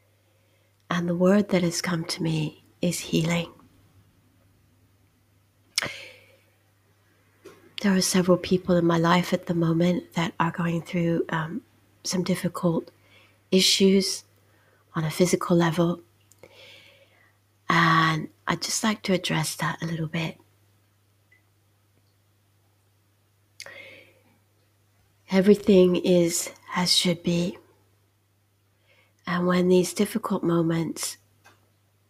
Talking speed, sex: 95 wpm, female